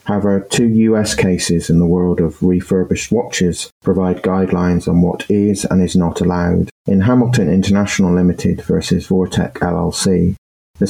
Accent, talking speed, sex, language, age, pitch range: British, 150 wpm, male, English, 30-49, 90-100 Hz